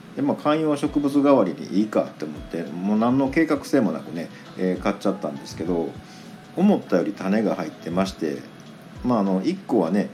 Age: 50-69